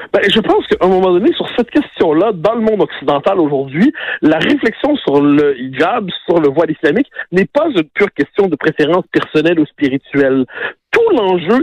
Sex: male